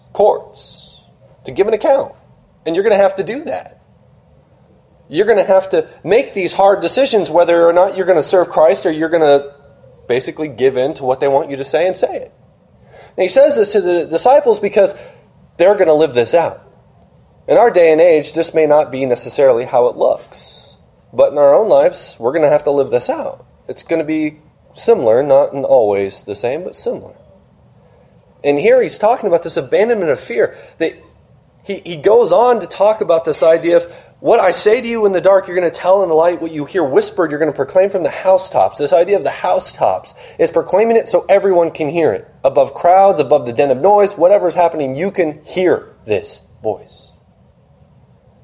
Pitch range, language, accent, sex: 150-220 Hz, English, American, male